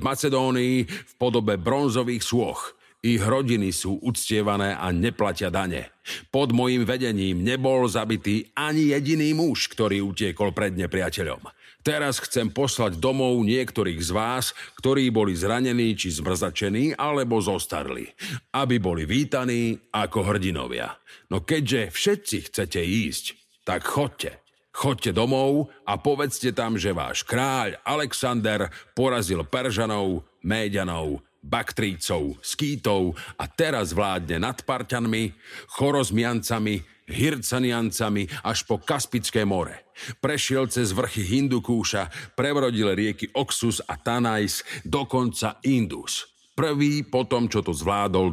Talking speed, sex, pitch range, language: 115 wpm, male, 100-130 Hz, Slovak